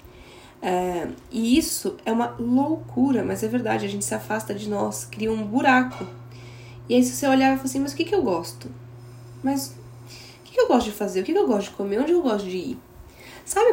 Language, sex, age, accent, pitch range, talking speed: Portuguese, female, 10-29, Brazilian, 180-245 Hz, 225 wpm